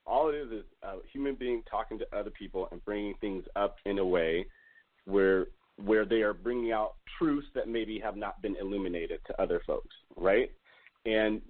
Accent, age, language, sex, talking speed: American, 30-49, English, male, 190 wpm